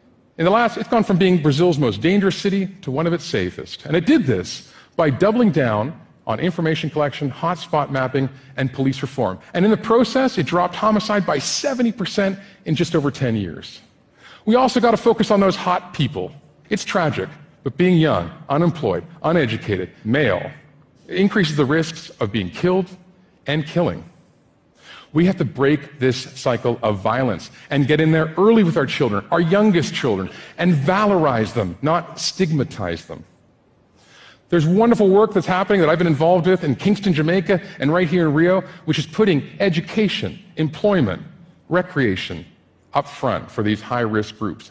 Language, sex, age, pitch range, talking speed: English, male, 50-69, 140-190 Hz, 170 wpm